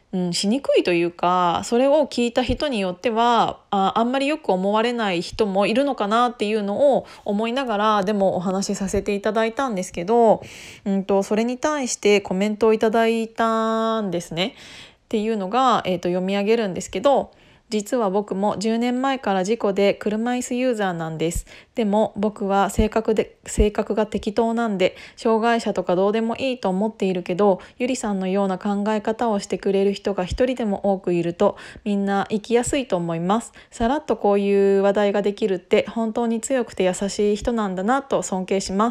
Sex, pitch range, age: female, 195-235 Hz, 20-39